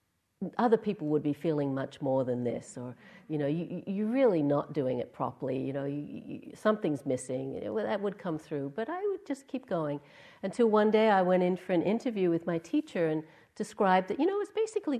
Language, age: English, 60-79